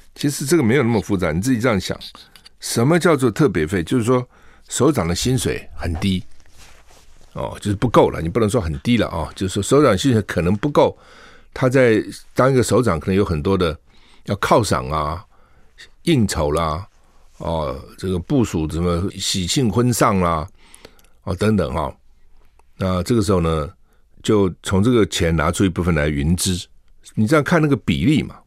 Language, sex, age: Chinese, male, 50-69